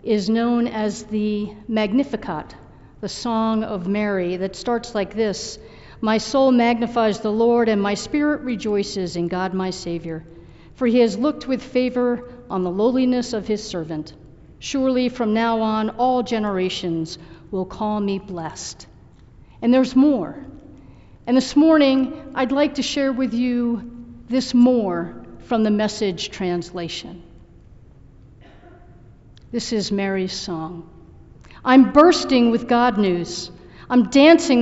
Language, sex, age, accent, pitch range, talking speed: English, female, 50-69, American, 185-250 Hz, 135 wpm